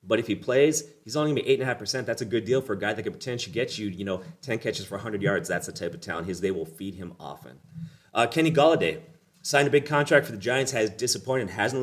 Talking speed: 265 wpm